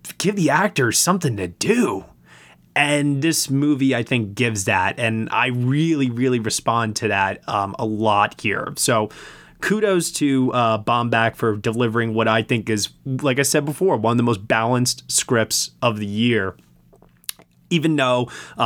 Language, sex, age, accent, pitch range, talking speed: English, male, 20-39, American, 110-140 Hz, 160 wpm